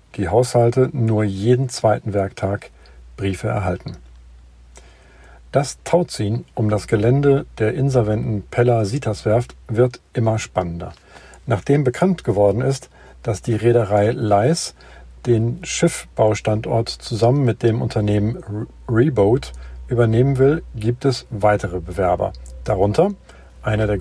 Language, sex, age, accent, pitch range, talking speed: German, male, 50-69, German, 95-120 Hz, 105 wpm